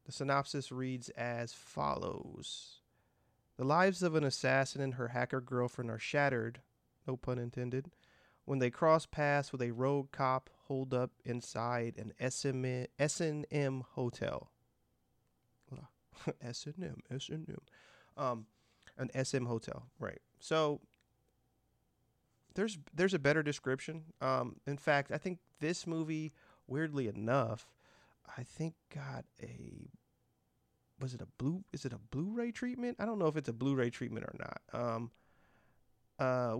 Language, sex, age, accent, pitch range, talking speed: English, male, 30-49, American, 125-155 Hz, 135 wpm